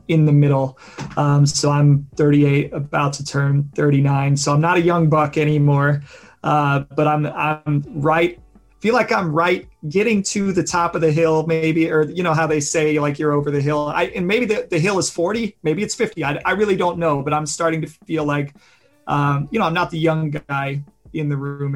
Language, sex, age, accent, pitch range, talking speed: English, male, 30-49, American, 140-155 Hz, 220 wpm